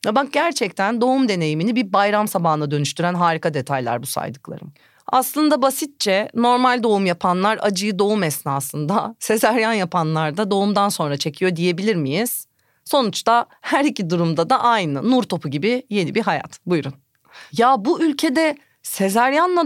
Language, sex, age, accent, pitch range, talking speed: Turkish, female, 30-49, native, 210-290 Hz, 135 wpm